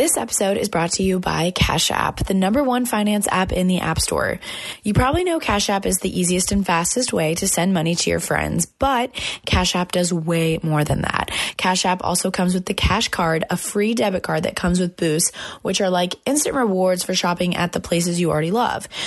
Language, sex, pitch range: English, female, 175-205 Hz